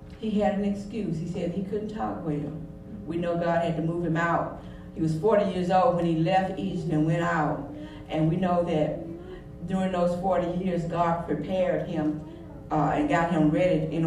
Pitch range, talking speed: 170-230 Hz, 200 wpm